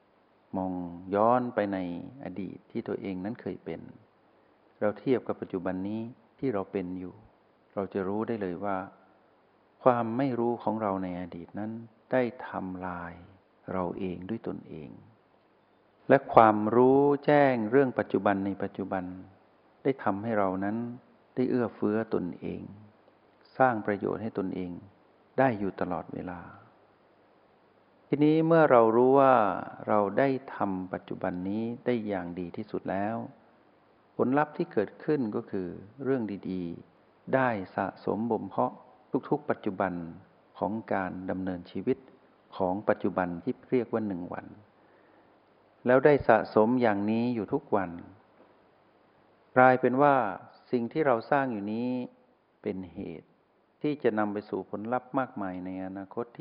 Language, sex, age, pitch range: Thai, male, 60-79, 95-125 Hz